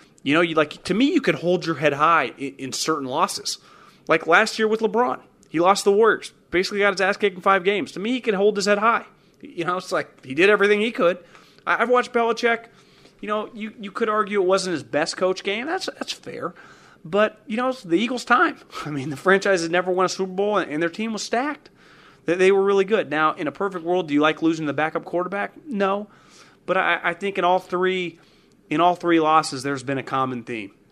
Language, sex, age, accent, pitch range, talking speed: English, male, 30-49, American, 145-200 Hz, 245 wpm